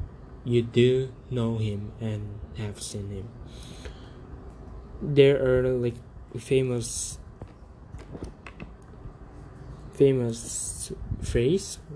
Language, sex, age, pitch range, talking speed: English, male, 20-39, 105-125 Hz, 70 wpm